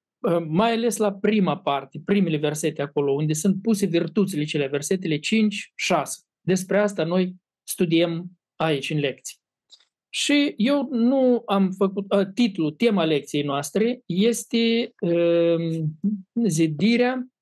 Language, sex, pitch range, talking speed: Romanian, male, 155-205 Hz, 115 wpm